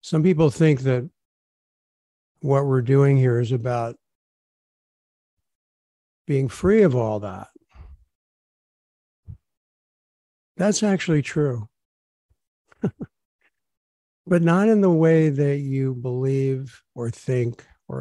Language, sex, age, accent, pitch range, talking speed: English, male, 50-69, American, 100-140 Hz, 95 wpm